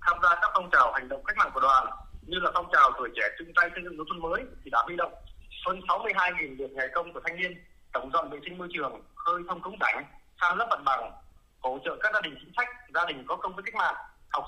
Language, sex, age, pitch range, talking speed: Vietnamese, male, 20-39, 120-165 Hz, 100 wpm